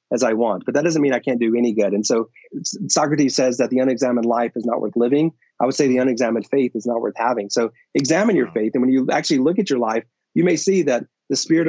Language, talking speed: English, 265 wpm